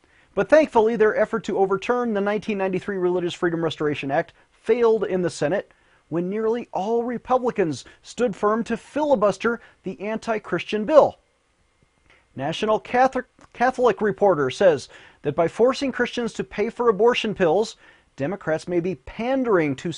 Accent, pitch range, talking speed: American, 170-235 Hz, 140 wpm